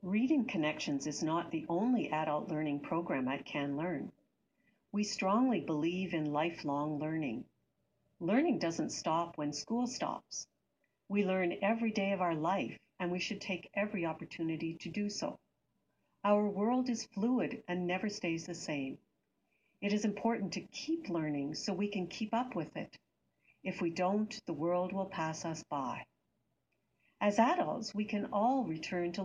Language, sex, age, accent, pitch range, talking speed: English, female, 60-79, American, 165-220 Hz, 160 wpm